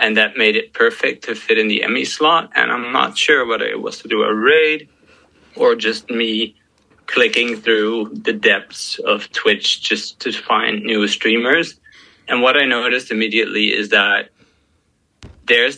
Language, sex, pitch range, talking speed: English, male, 105-115 Hz, 165 wpm